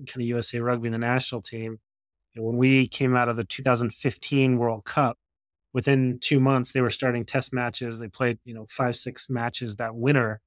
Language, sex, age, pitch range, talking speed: English, male, 30-49, 115-130 Hz, 200 wpm